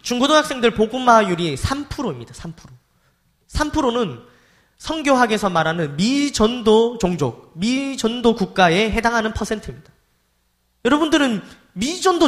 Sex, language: male, Korean